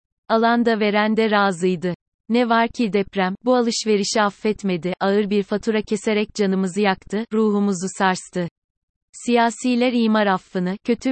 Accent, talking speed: native, 130 wpm